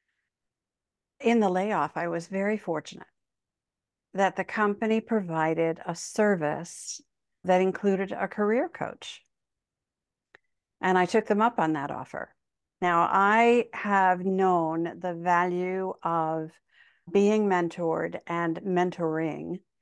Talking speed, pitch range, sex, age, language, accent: 110 wpm, 170-210 Hz, female, 60-79, English, American